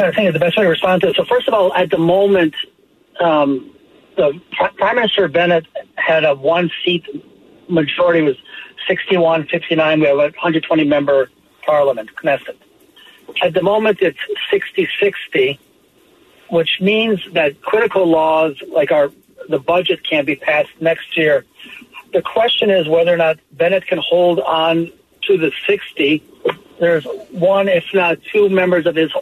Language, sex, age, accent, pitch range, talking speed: English, male, 60-79, American, 165-210 Hz, 150 wpm